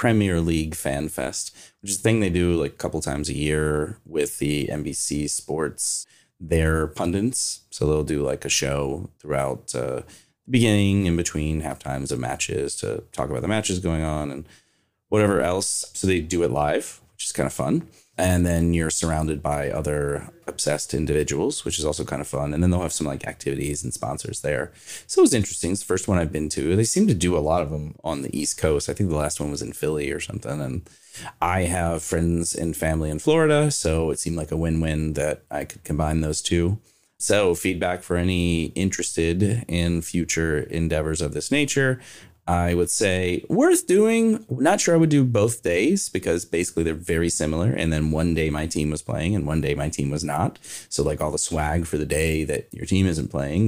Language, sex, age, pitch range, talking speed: English, male, 30-49, 75-95 Hz, 215 wpm